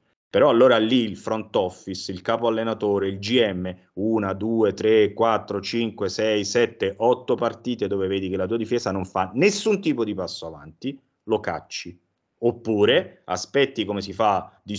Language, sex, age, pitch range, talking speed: Italian, male, 30-49, 90-115 Hz, 165 wpm